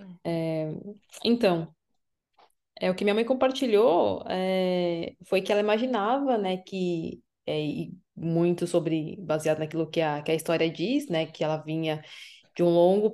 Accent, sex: Brazilian, female